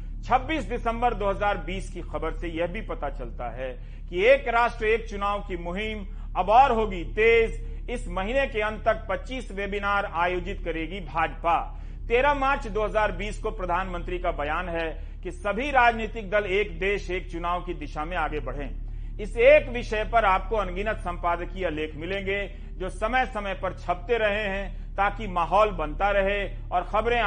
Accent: native